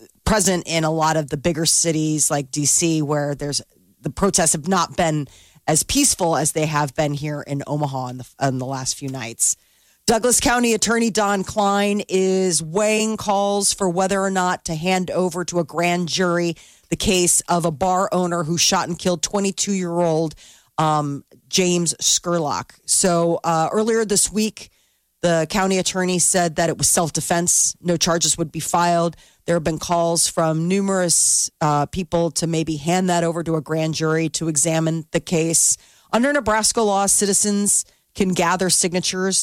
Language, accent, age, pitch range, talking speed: English, American, 40-59, 155-185 Hz, 170 wpm